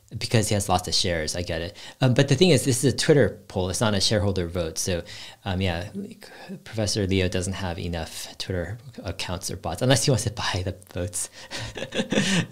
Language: English